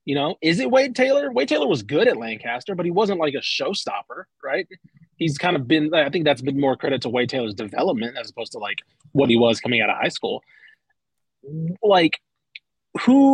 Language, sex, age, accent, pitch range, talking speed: English, male, 30-49, American, 120-155 Hz, 215 wpm